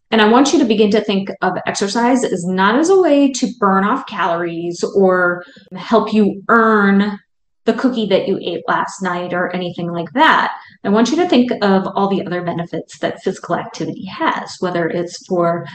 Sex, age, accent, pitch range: female, 30-49, American, 180-245 Hz